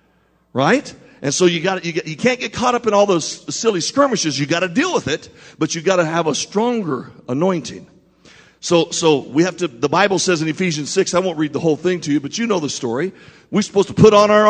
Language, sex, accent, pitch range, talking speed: English, male, American, 155-210 Hz, 255 wpm